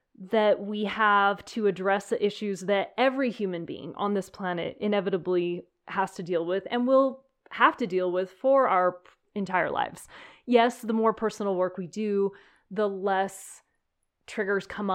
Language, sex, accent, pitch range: English, female, American, 190-240 Hz